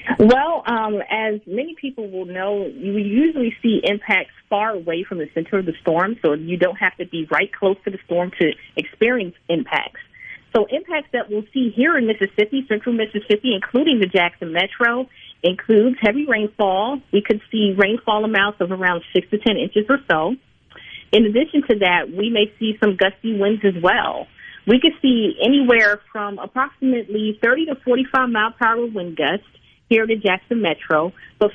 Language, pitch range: English, 185-230 Hz